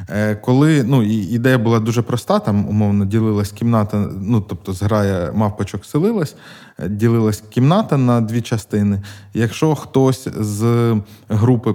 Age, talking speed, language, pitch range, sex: 20-39, 125 wpm, Ukrainian, 105-125 Hz, male